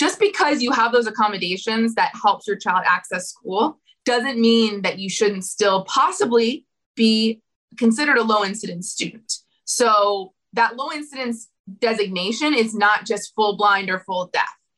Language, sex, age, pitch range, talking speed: English, female, 20-39, 190-230 Hz, 145 wpm